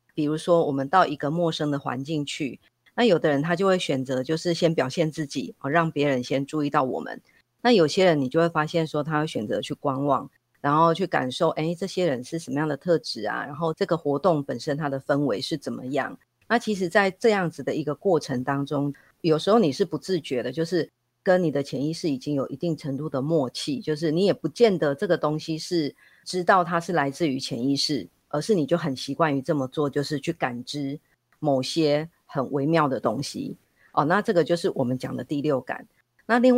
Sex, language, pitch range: female, Chinese, 140-170 Hz